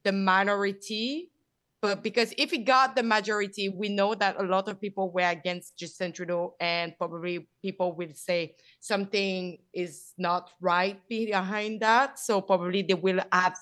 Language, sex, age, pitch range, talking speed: English, female, 20-39, 170-200 Hz, 160 wpm